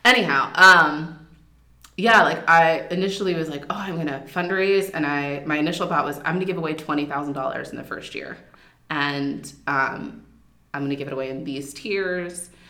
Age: 20-39